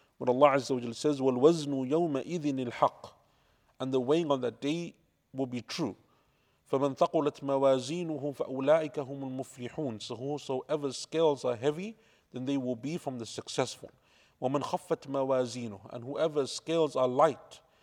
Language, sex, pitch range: English, male, 130-155 Hz